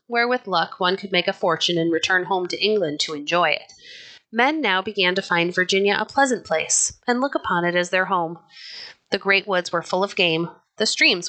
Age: 30-49